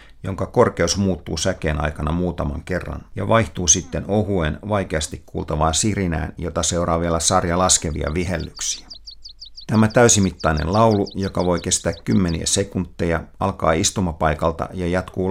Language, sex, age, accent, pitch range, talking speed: Finnish, male, 50-69, native, 80-95 Hz, 125 wpm